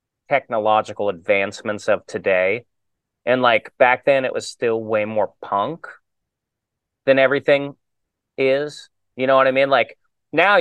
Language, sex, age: English, male, 30-49